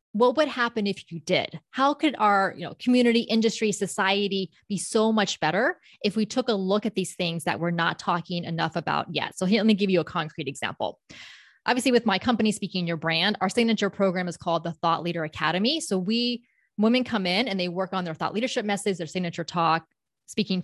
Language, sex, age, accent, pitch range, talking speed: English, female, 20-39, American, 185-235 Hz, 210 wpm